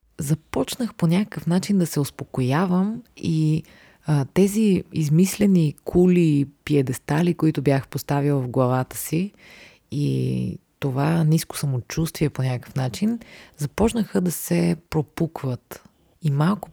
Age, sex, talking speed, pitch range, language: 30-49, female, 115 wpm, 140-175 Hz, Bulgarian